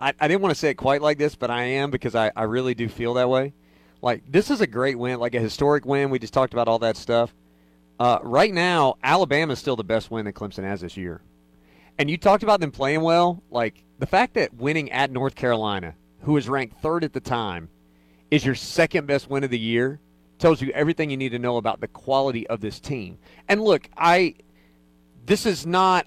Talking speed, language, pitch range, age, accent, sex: 230 wpm, English, 110-150 Hz, 40-59, American, male